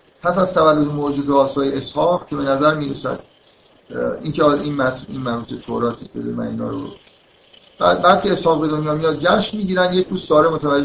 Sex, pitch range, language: male, 130-160 Hz, Persian